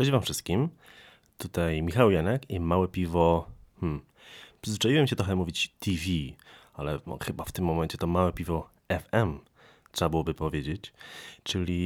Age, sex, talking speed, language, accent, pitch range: 30-49, male, 140 wpm, Polish, native, 80-95 Hz